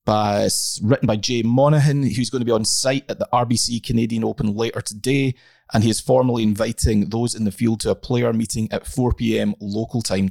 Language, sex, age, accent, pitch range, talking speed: English, male, 30-49, British, 105-135 Hz, 205 wpm